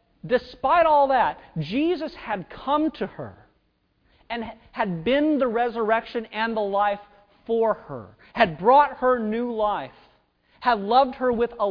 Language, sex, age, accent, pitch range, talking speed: English, male, 40-59, American, 195-265 Hz, 145 wpm